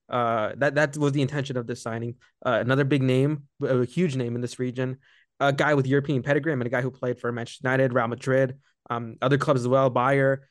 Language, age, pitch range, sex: English, 20-39, 125-145 Hz, male